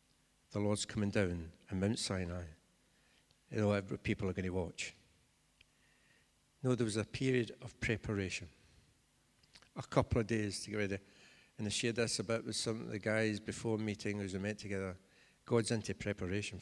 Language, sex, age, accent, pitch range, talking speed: English, male, 60-79, British, 100-115 Hz, 170 wpm